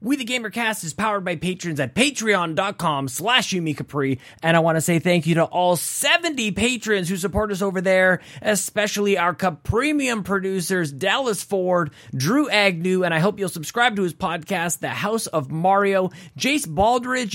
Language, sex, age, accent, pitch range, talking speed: English, male, 20-39, American, 150-210 Hz, 175 wpm